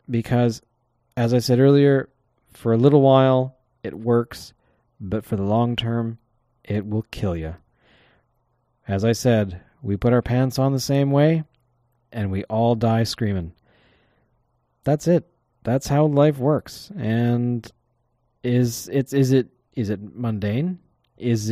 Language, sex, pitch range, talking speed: English, male, 100-135 Hz, 140 wpm